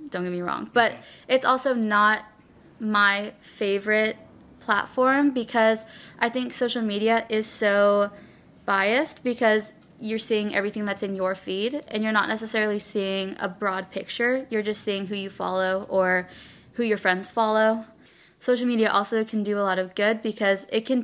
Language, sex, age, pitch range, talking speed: English, female, 20-39, 195-225 Hz, 165 wpm